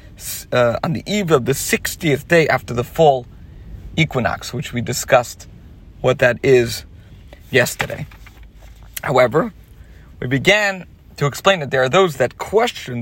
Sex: male